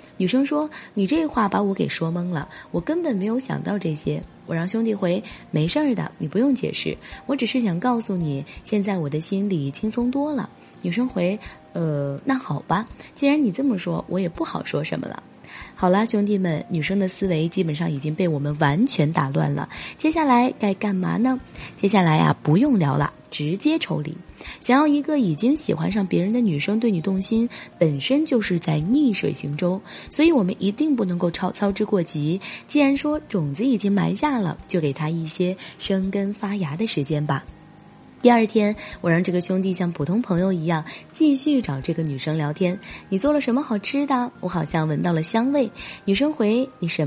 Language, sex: Chinese, female